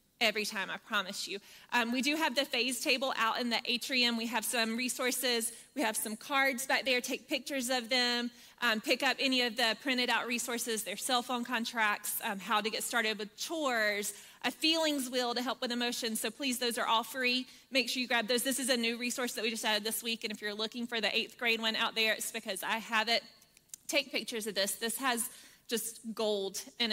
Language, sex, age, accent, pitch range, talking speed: English, female, 20-39, American, 220-250 Hz, 230 wpm